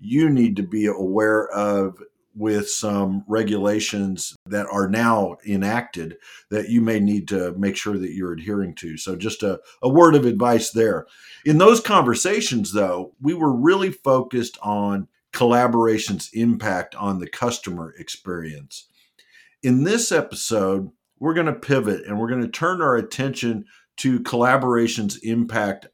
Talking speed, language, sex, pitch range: 150 wpm, English, male, 100-135 Hz